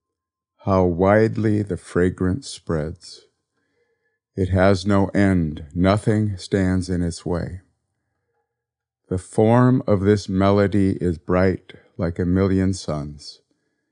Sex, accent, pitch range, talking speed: male, American, 85-105 Hz, 110 wpm